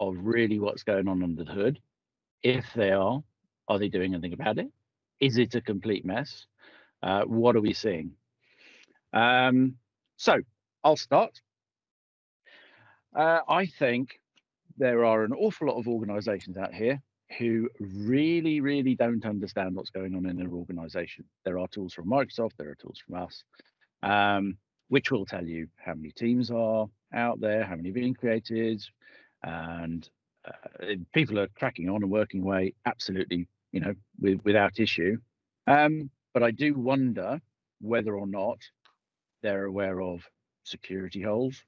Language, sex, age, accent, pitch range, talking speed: English, male, 50-69, British, 95-120 Hz, 155 wpm